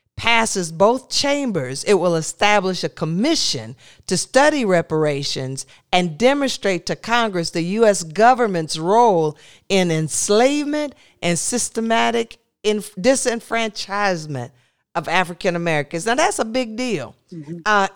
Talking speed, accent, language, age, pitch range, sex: 115 wpm, American, English, 50-69, 160-230 Hz, female